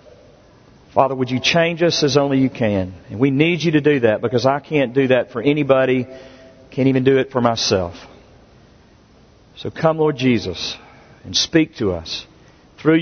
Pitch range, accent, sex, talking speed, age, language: 135-210 Hz, American, male, 175 wpm, 50-69, English